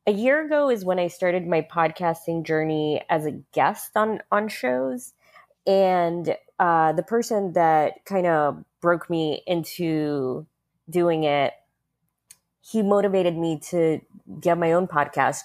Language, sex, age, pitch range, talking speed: English, female, 20-39, 155-195 Hz, 140 wpm